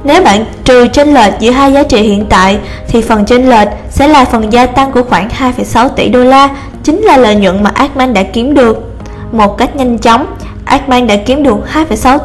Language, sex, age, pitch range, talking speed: Vietnamese, female, 20-39, 220-270 Hz, 215 wpm